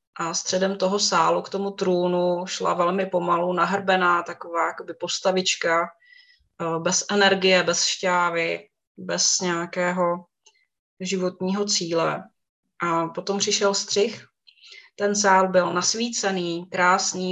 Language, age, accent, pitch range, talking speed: Czech, 20-39, native, 175-195 Hz, 105 wpm